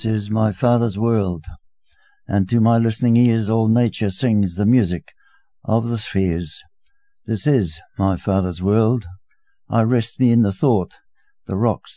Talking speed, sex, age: 155 wpm, male, 60-79